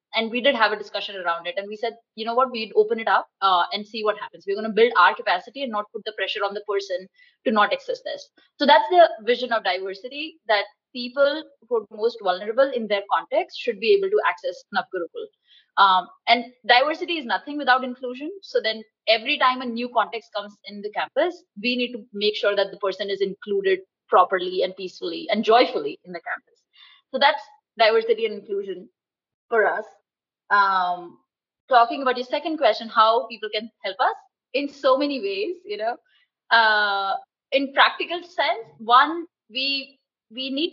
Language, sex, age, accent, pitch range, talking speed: Hindi, female, 20-39, native, 210-320 Hz, 195 wpm